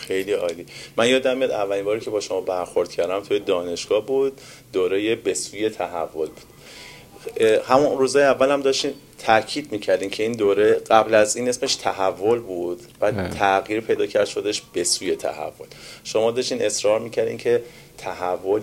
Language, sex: Persian, male